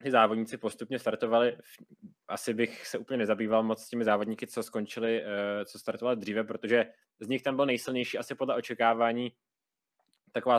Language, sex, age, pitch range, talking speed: Czech, male, 20-39, 110-120 Hz, 160 wpm